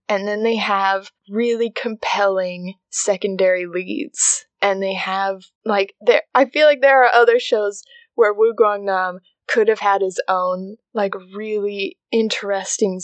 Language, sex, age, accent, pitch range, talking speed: English, female, 20-39, American, 195-300 Hz, 145 wpm